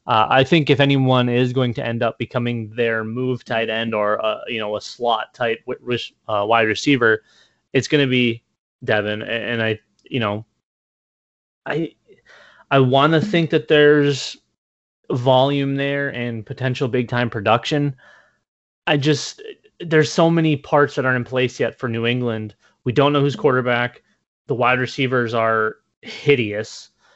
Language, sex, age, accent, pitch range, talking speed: English, male, 20-39, American, 120-145 Hz, 165 wpm